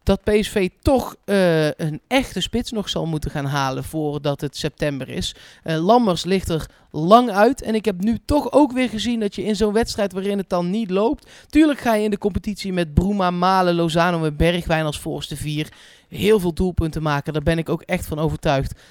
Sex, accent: male, Dutch